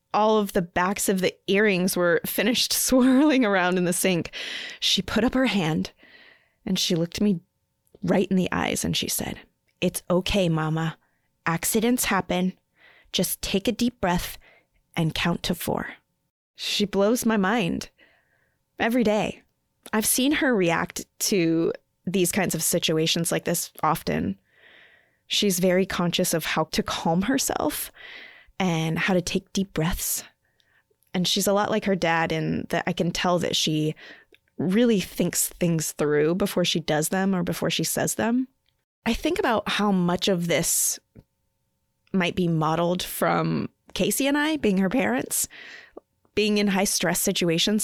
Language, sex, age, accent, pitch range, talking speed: English, female, 20-39, American, 175-215 Hz, 155 wpm